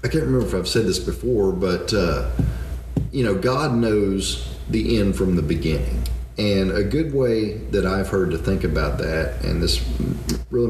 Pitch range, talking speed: 80-115 Hz, 185 wpm